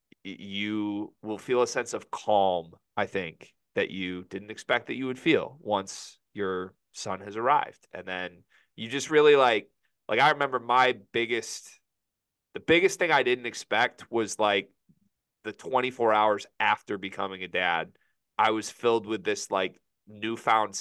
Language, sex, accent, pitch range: English, male, American, 95-135 Hz